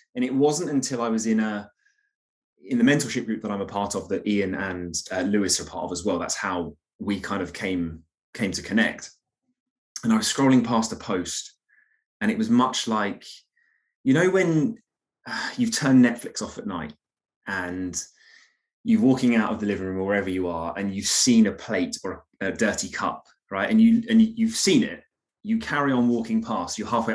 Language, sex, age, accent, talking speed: English, male, 20-39, British, 210 wpm